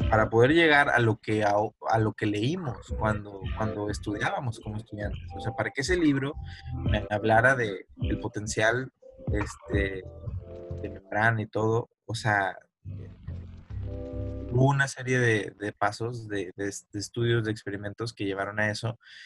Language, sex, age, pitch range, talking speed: Spanish, male, 20-39, 100-125 Hz, 155 wpm